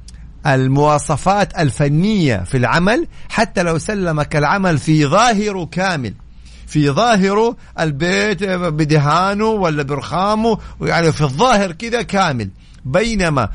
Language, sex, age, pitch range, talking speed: Arabic, male, 50-69, 140-190 Hz, 100 wpm